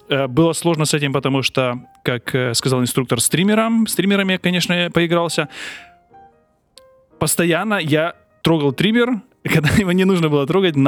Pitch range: 130-175 Hz